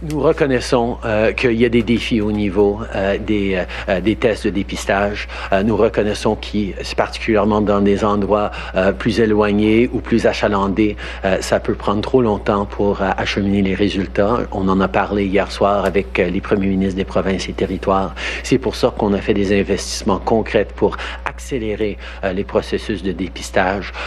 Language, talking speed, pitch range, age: French, 180 wpm, 100-115 Hz, 60-79